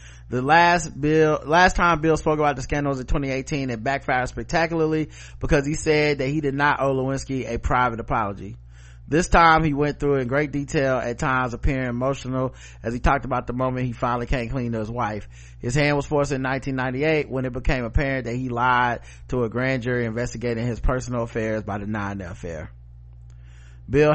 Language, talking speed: English, 195 wpm